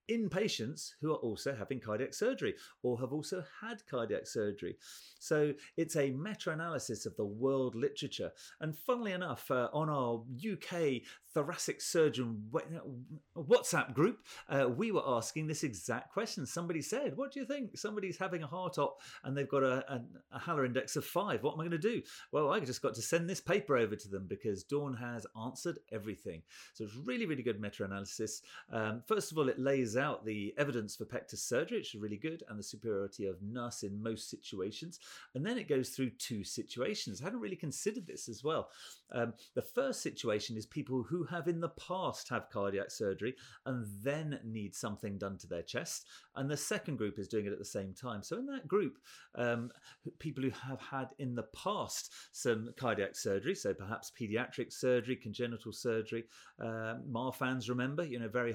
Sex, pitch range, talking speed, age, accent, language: male, 115-155 Hz, 190 wpm, 30-49, British, English